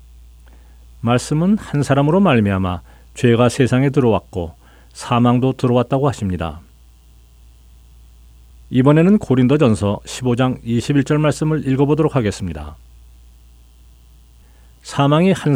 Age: 40-59